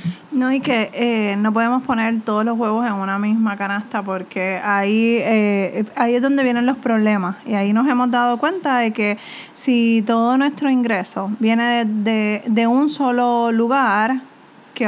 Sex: female